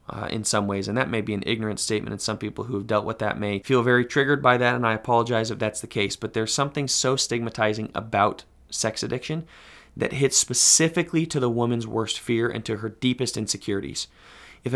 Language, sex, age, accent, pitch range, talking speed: English, male, 30-49, American, 105-130 Hz, 220 wpm